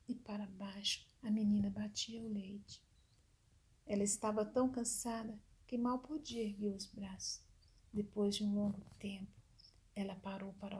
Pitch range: 190-230 Hz